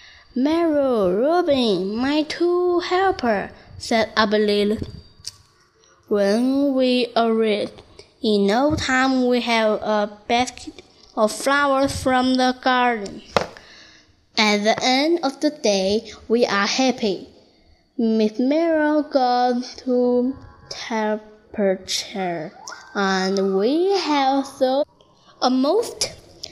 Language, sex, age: Chinese, female, 10-29